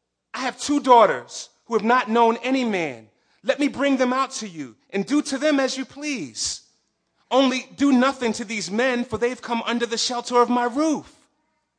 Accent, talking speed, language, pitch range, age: American, 200 wpm, English, 175-245 Hz, 30-49